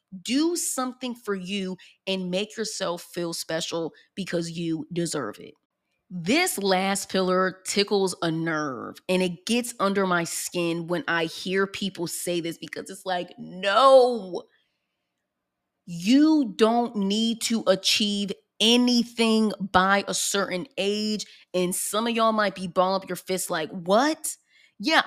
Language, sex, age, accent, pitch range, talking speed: English, female, 20-39, American, 185-240 Hz, 140 wpm